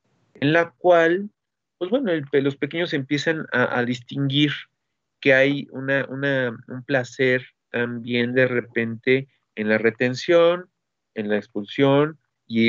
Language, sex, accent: Spanish, male, Mexican